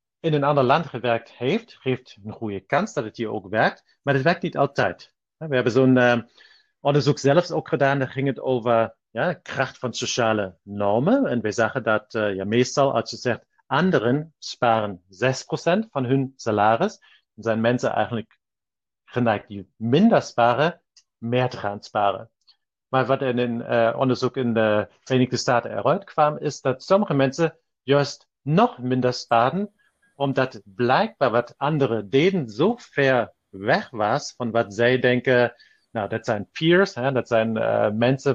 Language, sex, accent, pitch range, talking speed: Dutch, male, German, 115-150 Hz, 165 wpm